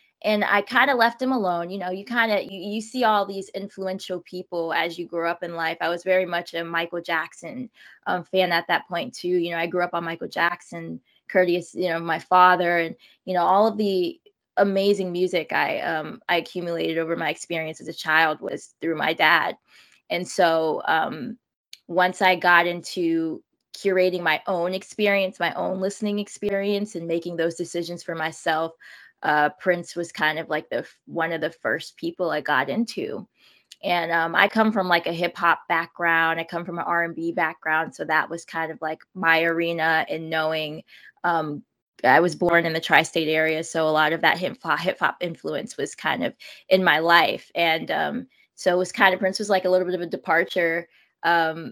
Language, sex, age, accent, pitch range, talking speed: English, female, 20-39, American, 165-190 Hz, 200 wpm